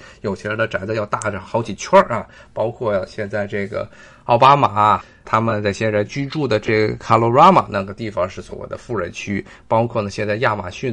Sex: male